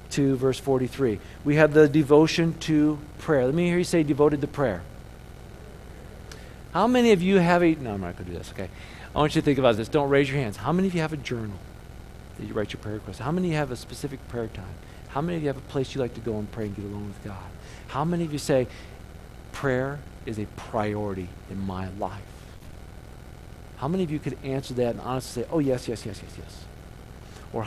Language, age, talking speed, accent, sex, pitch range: English, 50-69, 240 wpm, American, male, 100-150 Hz